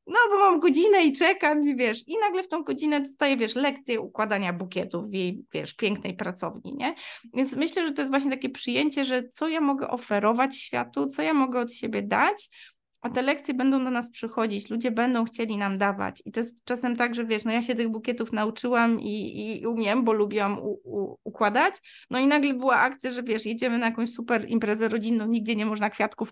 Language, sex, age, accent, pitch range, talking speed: Polish, female, 20-39, native, 210-260 Hz, 215 wpm